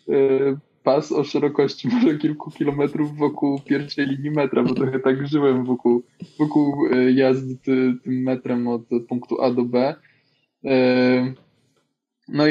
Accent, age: native, 20-39